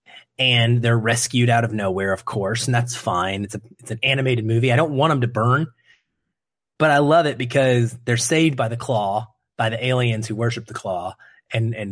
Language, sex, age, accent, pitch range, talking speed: English, male, 30-49, American, 115-140 Hz, 210 wpm